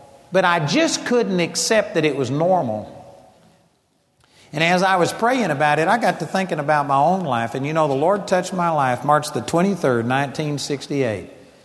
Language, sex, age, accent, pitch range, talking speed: English, male, 60-79, American, 145-205 Hz, 185 wpm